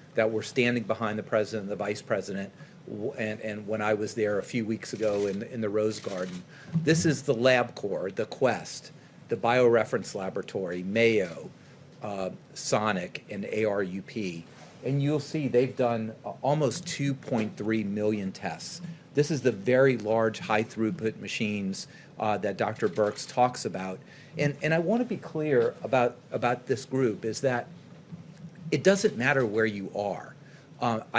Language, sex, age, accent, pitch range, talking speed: English, male, 40-59, American, 110-145 Hz, 160 wpm